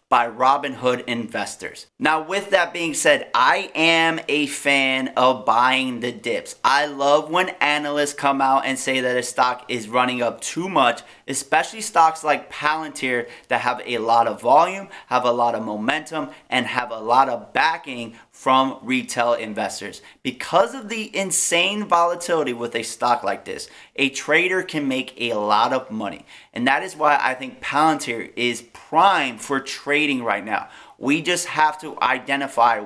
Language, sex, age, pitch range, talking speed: English, male, 30-49, 125-160 Hz, 170 wpm